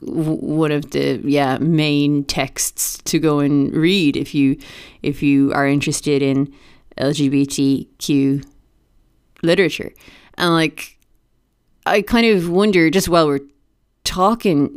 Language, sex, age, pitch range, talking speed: English, female, 30-49, 145-180 Hz, 120 wpm